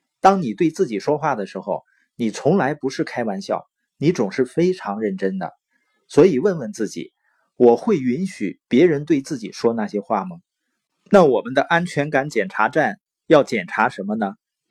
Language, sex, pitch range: Chinese, male, 125-185 Hz